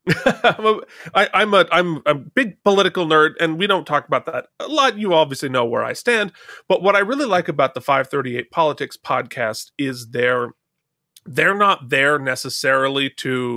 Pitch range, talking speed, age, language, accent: 135-175 Hz, 175 wpm, 30-49, English, American